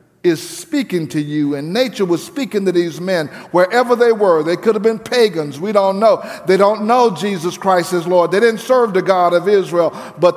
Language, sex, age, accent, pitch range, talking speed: English, male, 50-69, American, 150-195 Hz, 215 wpm